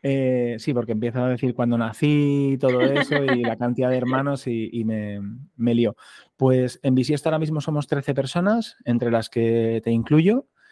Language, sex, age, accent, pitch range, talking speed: Spanish, male, 30-49, Spanish, 115-135 Hz, 190 wpm